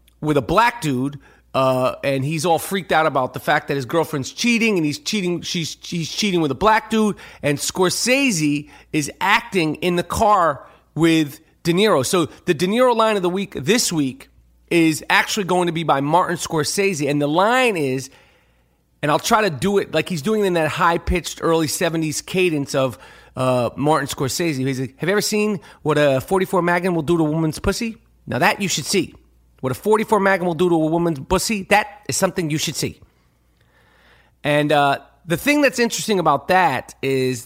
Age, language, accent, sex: 40-59, English, American, male